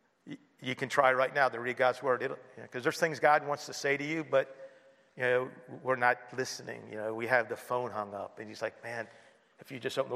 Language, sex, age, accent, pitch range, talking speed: English, male, 50-69, American, 125-140 Hz, 255 wpm